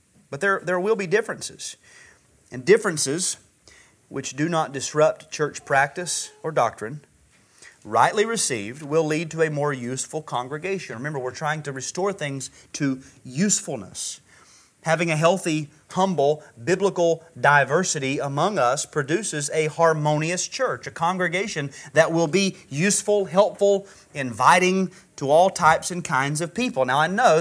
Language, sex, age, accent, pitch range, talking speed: English, male, 30-49, American, 150-195 Hz, 140 wpm